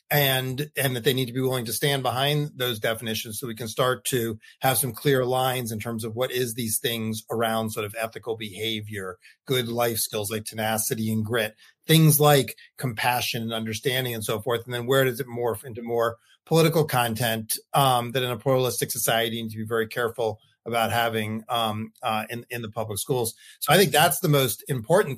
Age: 30-49